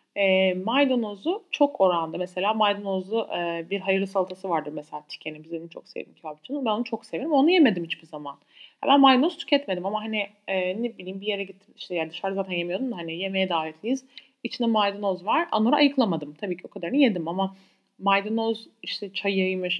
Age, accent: 30-49, native